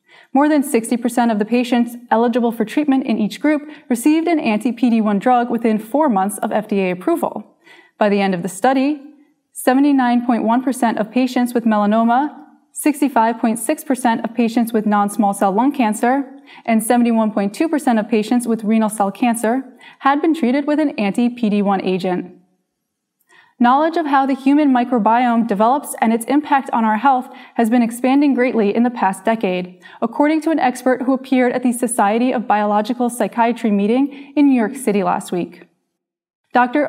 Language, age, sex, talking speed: English, 20-39, female, 160 wpm